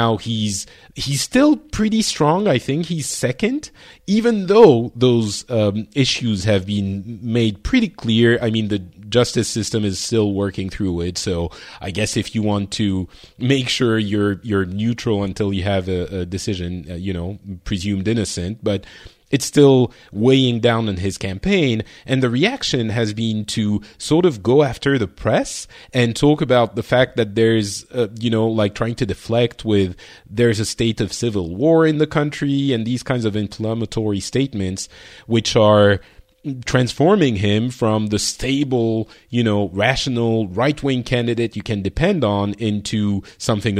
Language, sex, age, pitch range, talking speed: English, male, 30-49, 100-125 Hz, 165 wpm